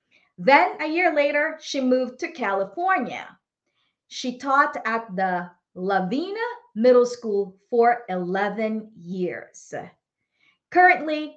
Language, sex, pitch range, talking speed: English, female, 200-290 Hz, 100 wpm